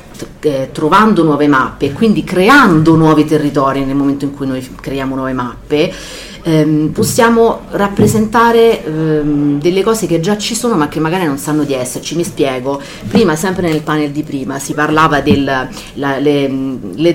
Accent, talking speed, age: native, 155 wpm, 40-59